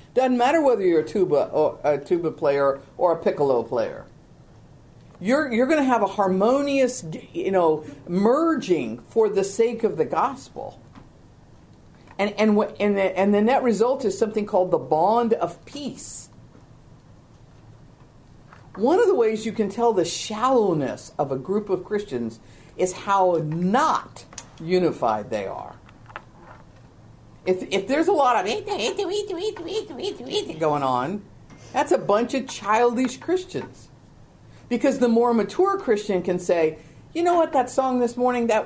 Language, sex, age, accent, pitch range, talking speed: English, female, 50-69, American, 160-250 Hz, 145 wpm